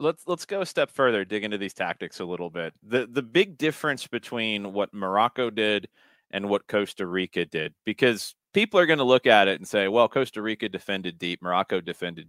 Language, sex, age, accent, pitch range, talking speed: English, male, 30-49, American, 100-130 Hz, 210 wpm